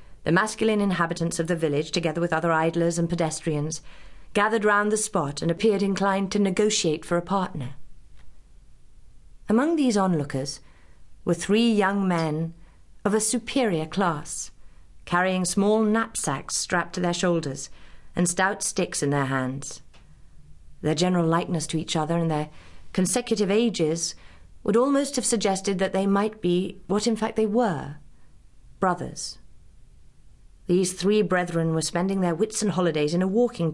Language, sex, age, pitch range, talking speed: English, female, 40-59, 155-200 Hz, 150 wpm